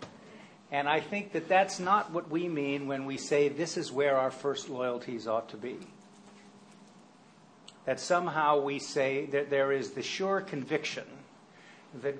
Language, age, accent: English, 50-69, American